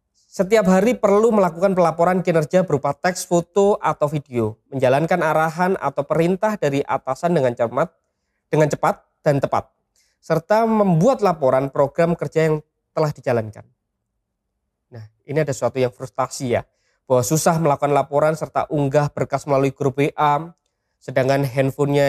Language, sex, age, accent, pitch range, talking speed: Indonesian, male, 20-39, native, 140-170 Hz, 130 wpm